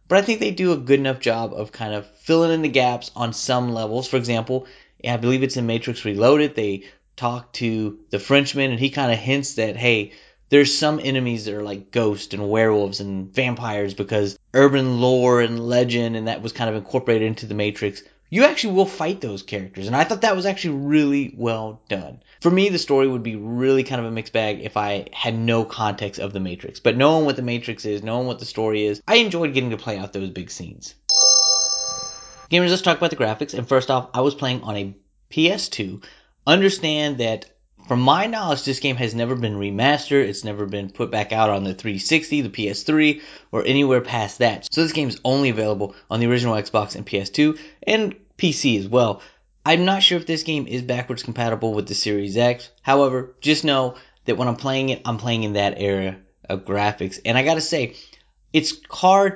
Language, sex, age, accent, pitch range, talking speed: English, male, 30-49, American, 110-140 Hz, 210 wpm